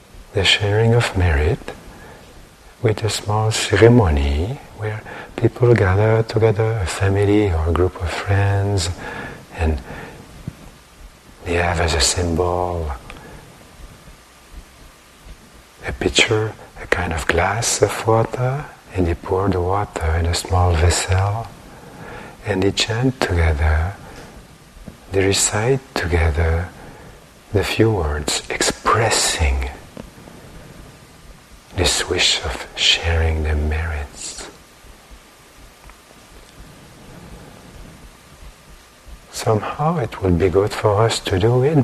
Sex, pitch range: male, 85-115 Hz